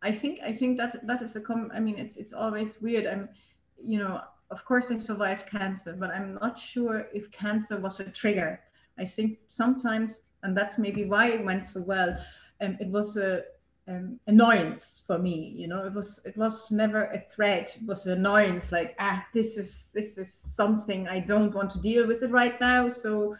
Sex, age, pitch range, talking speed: female, 30-49, 195-230 Hz, 210 wpm